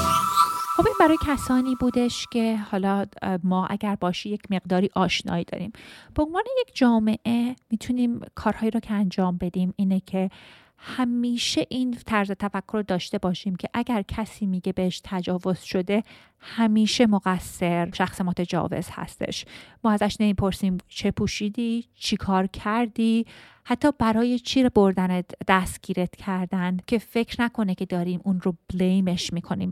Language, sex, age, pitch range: Persian, female, 30-49, 185-225 Hz